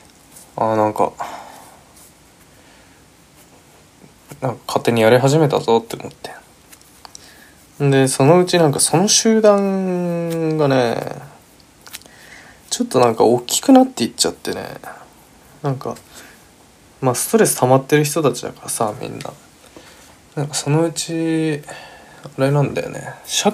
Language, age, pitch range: Japanese, 20-39, 115-170 Hz